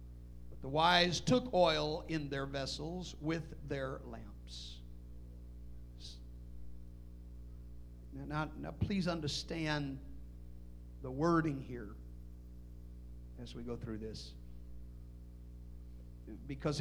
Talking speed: 85 wpm